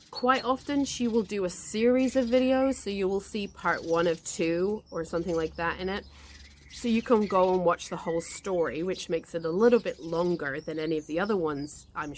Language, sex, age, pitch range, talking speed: English, female, 30-49, 160-205 Hz, 225 wpm